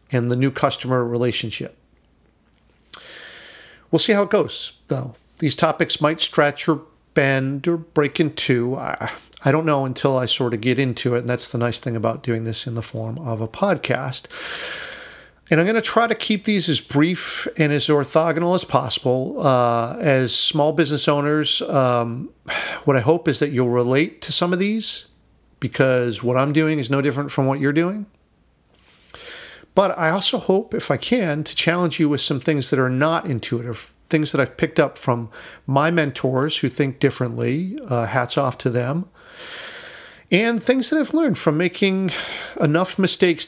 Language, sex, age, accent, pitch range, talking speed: English, male, 40-59, American, 125-165 Hz, 180 wpm